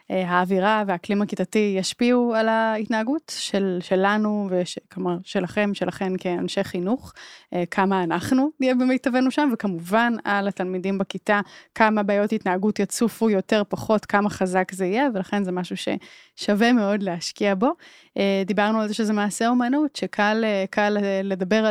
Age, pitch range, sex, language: 20-39, 190-230 Hz, female, Hebrew